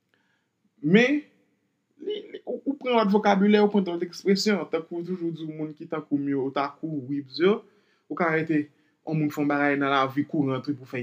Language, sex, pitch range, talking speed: French, male, 135-185 Hz, 135 wpm